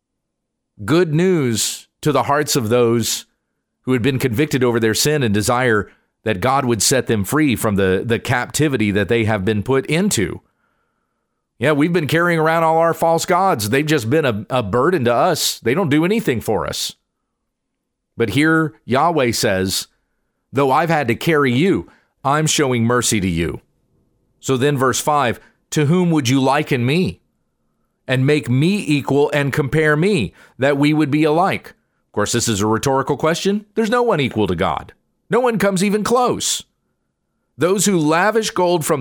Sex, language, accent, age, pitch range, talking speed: male, English, American, 40-59, 120-175 Hz, 175 wpm